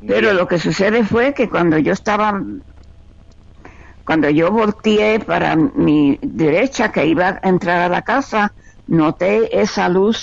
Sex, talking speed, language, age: female, 145 wpm, Spanish, 50-69